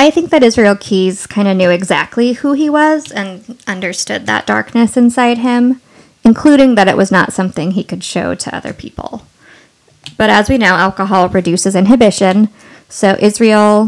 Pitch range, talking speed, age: 195-245 Hz, 170 wpm, 20-39